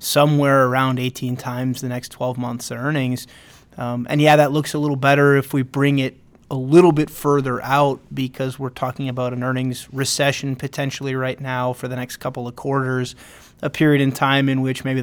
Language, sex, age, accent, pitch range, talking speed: English, male, 30-49, American, 130-145 Hz, 195 wpm